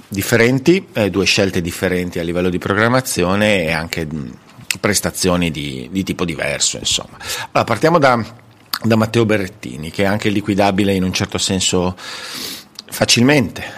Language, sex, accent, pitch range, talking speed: Italian, male, native, 90-105 Hz, 135 wpm